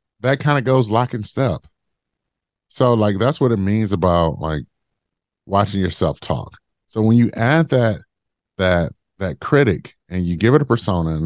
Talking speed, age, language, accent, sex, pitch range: 175 wpm, 30-49, English, American, male, 85-115 Hz